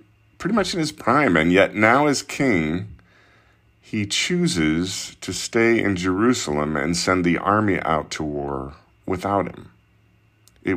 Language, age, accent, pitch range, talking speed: English, 40-59, American, 75-100 Hz, 145 wpm